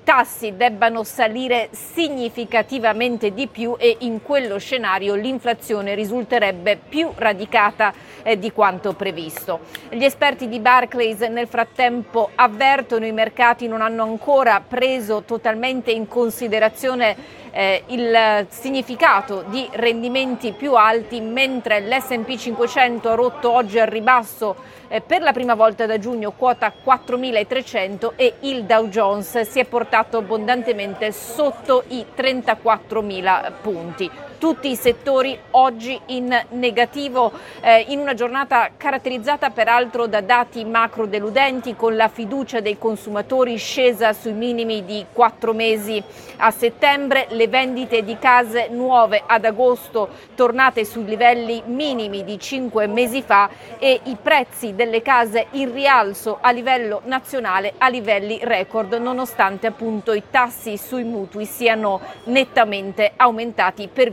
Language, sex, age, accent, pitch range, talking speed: Italian, female, 40-59, native, 220-255 Hz, 125 wpm